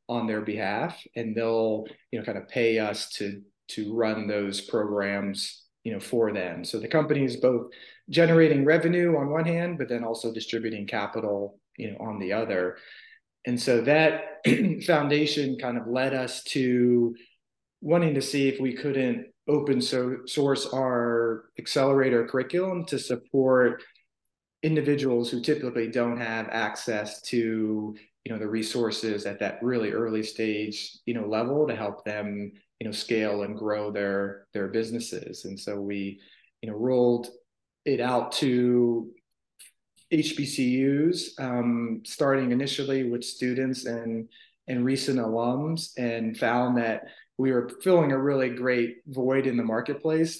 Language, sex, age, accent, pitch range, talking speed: English, male, 30-49, American, 110-135 Hz, 150 wpm